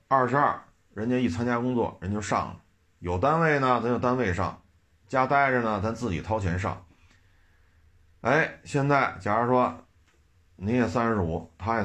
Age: 30-49